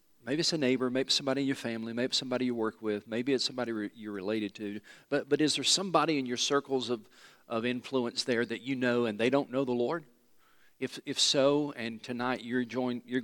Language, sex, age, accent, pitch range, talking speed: English, male, 40-59, American, 110-140 Hz, 230 wpm